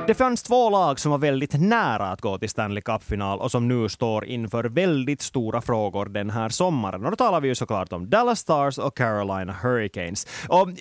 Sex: male